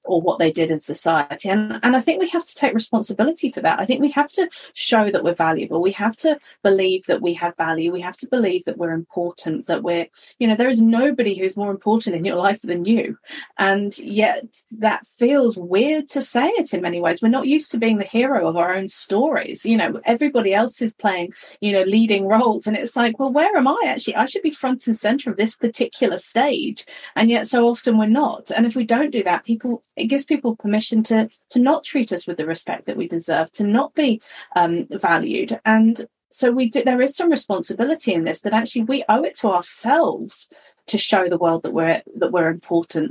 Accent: British